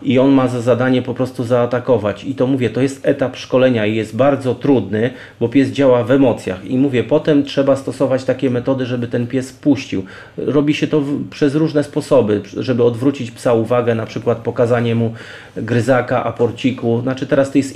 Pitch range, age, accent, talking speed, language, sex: 120-140 Hz, 30-49, native, 185 wpm, Polish, male